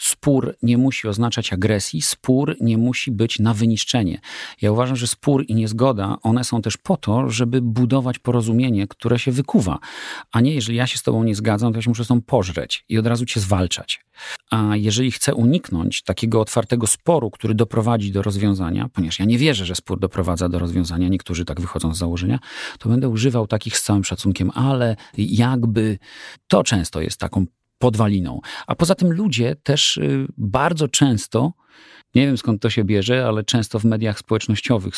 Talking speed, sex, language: 180 wpm, male, Polish